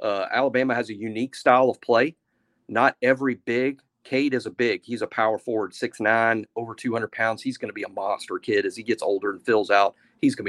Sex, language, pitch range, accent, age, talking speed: male, English, 110-130 Hz, American, 40-59, 230 wpm